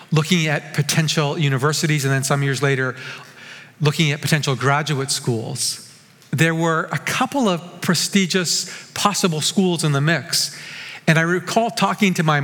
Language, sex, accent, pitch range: English, male, American, 140-175 Hz